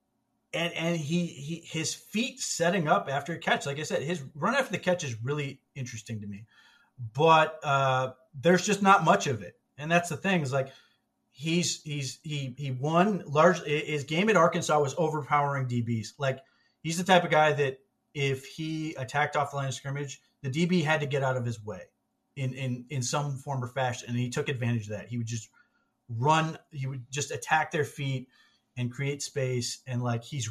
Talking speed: 205 wpm